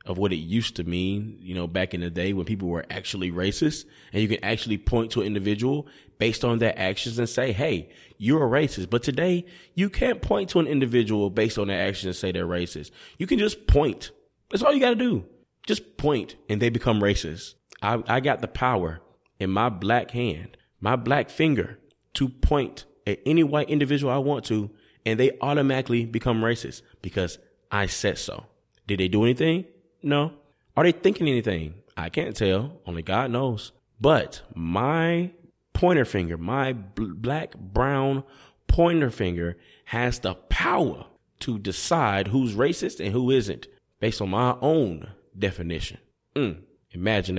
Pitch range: 95-135 Hz